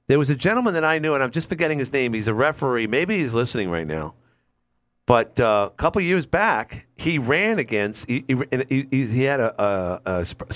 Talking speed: 220 wpm